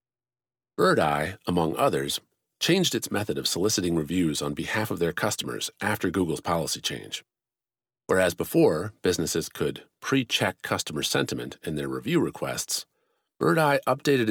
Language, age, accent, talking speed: English, 40-59, American, 130 wpm